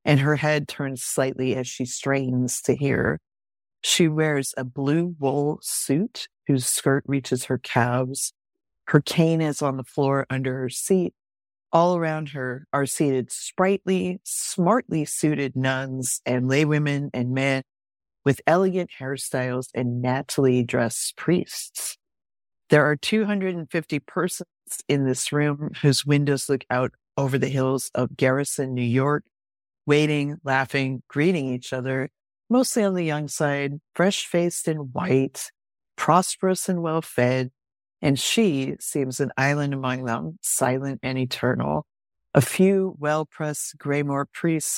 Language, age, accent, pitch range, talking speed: English, 50-69, American, 130-150 Hz, 135 wpm